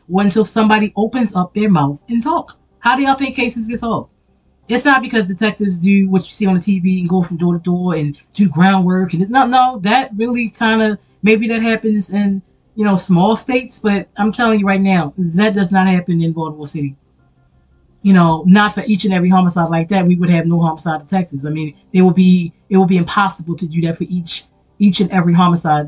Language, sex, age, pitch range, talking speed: English, female, 20-39, 170-225 Hz, 225 wpm